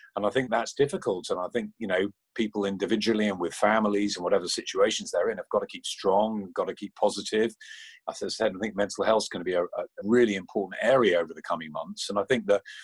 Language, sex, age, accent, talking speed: English, male, 40-59, British, 250 wpm